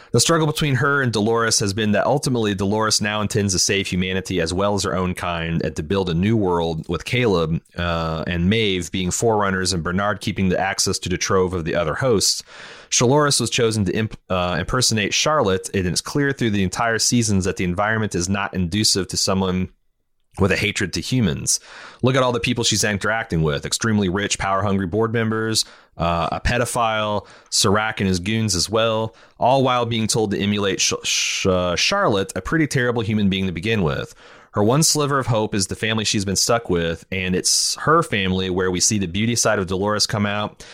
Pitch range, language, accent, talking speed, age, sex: 95-115 Hz, English, American, 205 wpm, 30-49, male